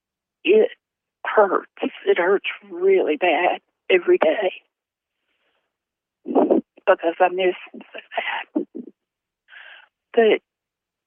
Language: English